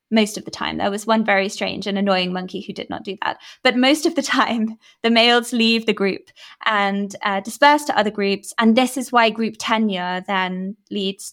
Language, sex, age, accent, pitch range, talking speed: English, female, 20-39, British, 200-255 Hz, 215 wpm